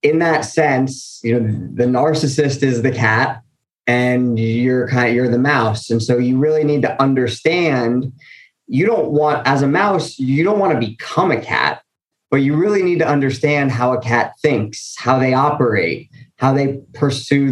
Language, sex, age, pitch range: English, male, 20-39, 120-140 Hz